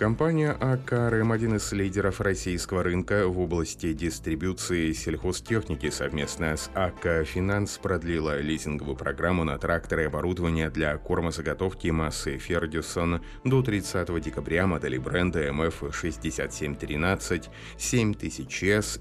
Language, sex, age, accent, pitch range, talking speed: Russian, male, 30-49, native, 80-100 Hz, 100 wpm